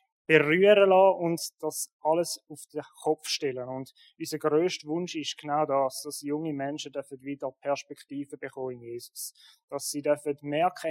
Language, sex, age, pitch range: German, male, 20-39, 150-180 Hz